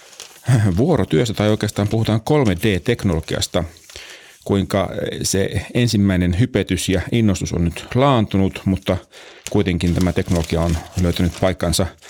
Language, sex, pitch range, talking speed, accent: Finnish, male, 85-105 Hz, 105 wpm, native